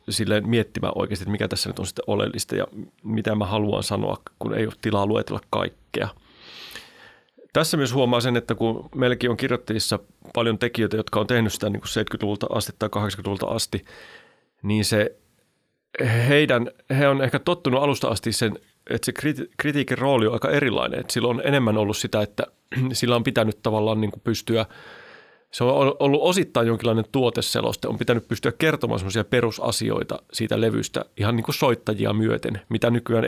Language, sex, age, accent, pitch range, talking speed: Finnish, male, 30-49, native, 110-130 Hz, 170 wpm